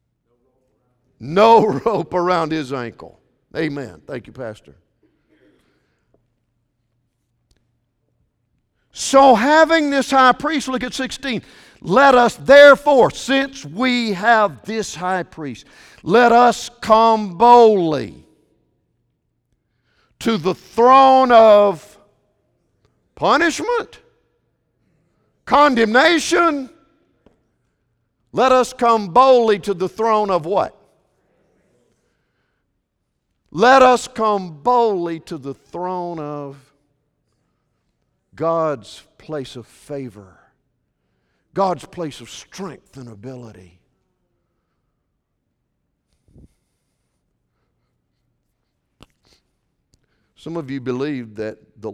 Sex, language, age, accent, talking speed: male, English, 50-69, American, 80 wpm